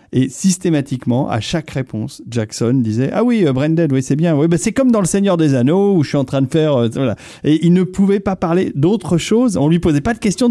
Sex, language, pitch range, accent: male, French, 125-170 Hz, French